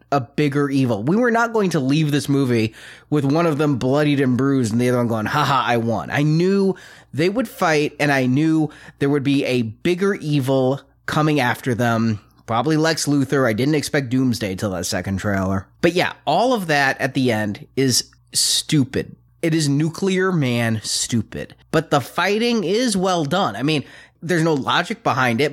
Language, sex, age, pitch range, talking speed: English, male, 30-49, 125-165 Hz, 195 wpm